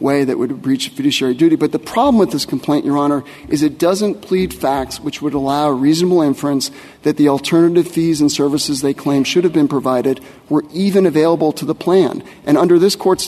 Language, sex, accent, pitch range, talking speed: English, male, American, 150-195 Hz, 215 wpm